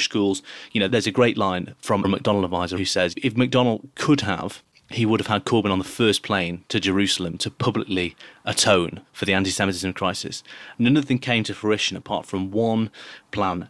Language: English